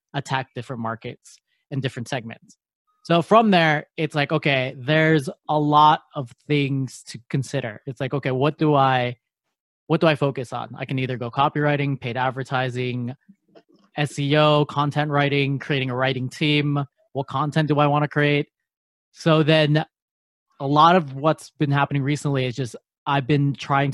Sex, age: male, 20-39